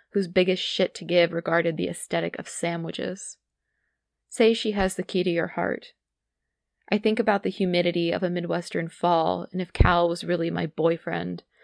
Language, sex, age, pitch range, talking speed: English, female, 20-39, 165-180 Hz, 175 wpm